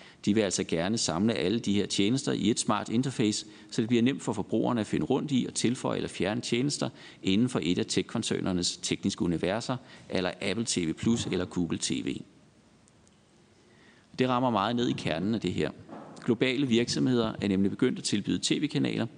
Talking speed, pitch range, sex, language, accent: 185 wpm, 95-125 Hz, male, Danish, native